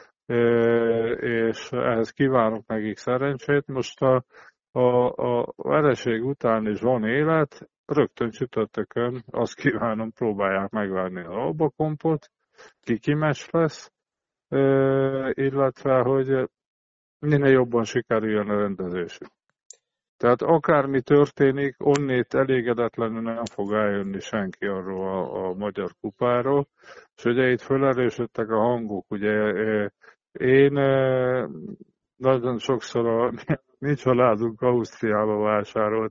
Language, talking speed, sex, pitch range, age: Hungarian, 100 wpm, male, 110-135 Hz, 50-69